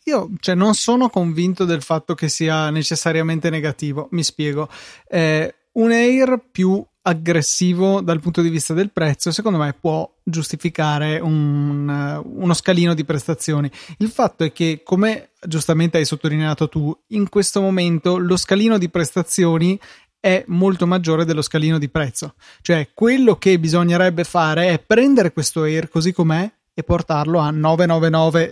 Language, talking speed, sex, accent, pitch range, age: Italian, 145 wpm, male, native, 160-195 Hz, 20-39